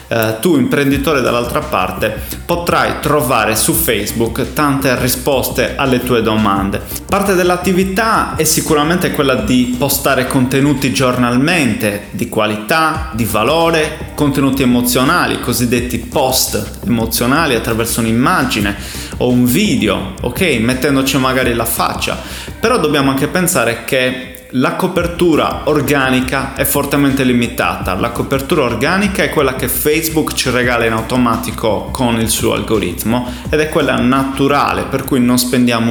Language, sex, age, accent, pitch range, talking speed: Italian, male, 20-39, native, 115-145 Hz, 125 wpm